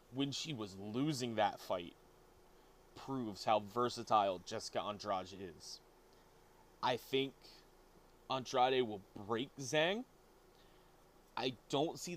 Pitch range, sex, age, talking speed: 105-135 Hz, male, 20-39, 105 wpm